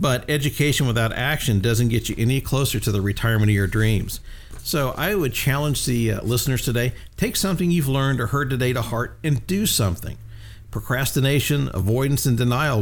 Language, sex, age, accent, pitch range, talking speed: English, male, 50-69, American, 110-130 Hz, 180 wpm